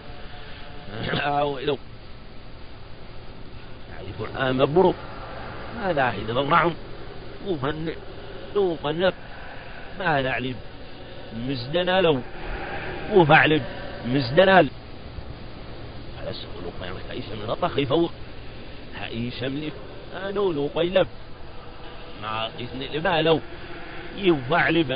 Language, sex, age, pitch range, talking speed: Arabic, male, 50-69, 120-160 Hz, 70 wpm